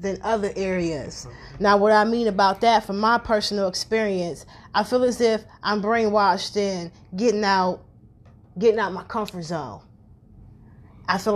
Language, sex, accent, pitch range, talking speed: English, female, American, 165-205 Hz, 155 wpm